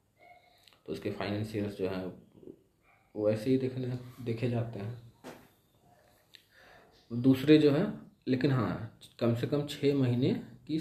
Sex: male